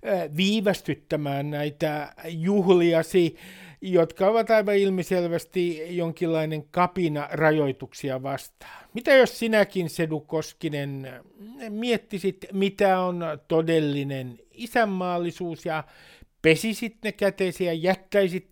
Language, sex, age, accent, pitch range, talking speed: Finnish, male, 60-79, native, 155-205 Hz, 85 wpm